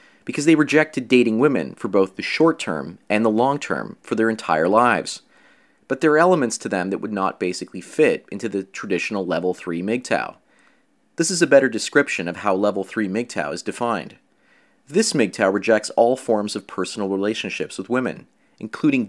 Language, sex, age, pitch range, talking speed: English, male, 30-49, 100-135 Hz, 175 wpm